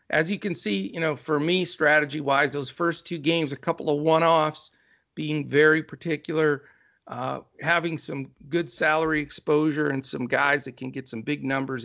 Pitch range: 135-165 Hz